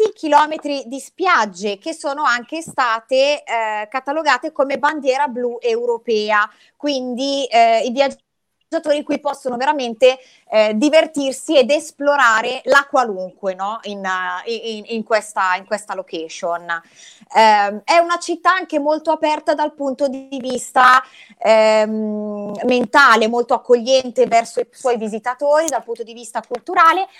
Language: Italian